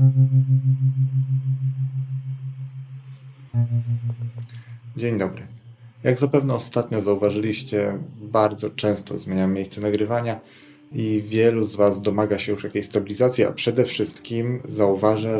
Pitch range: 105-130 Hz